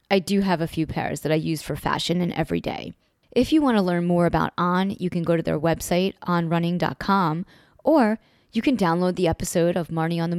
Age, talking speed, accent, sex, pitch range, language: 20-39, 220 wpm, American, female, 170-205 Hz, English